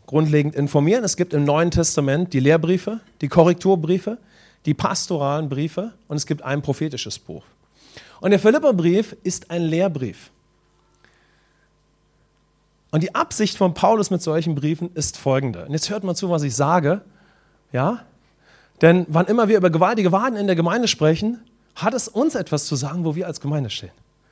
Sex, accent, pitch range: male, German, 140-185 Hz